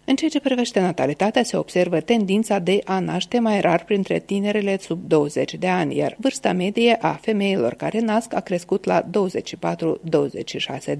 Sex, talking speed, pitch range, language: female, 165 wpm, 170-230 Hz, Romanian